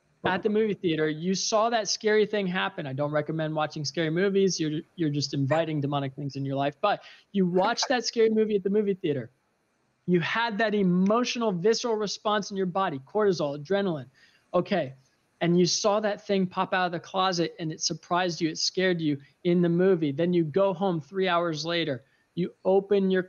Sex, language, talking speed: male, English, 200 wpm